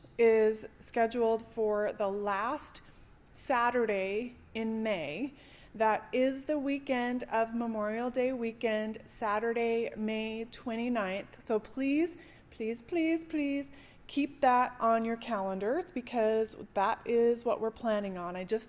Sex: female